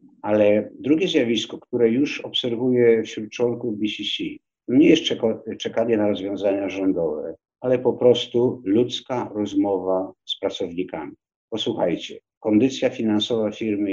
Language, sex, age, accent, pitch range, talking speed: Polish, male, 50-69, native, 105-125 Hz, 110 wpm